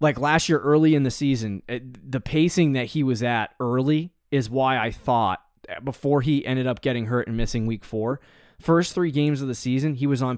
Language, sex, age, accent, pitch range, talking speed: English, male, 20-39, American, 110-145 Hz, 215 wpm